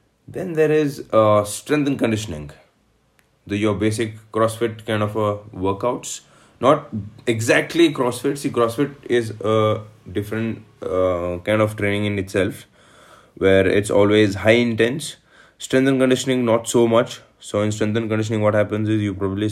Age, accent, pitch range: 20-39, Indian, 95-115 Hz